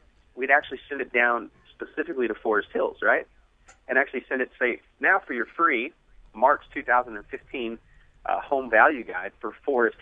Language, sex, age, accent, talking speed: English, male, 30-49, American, 170 wpm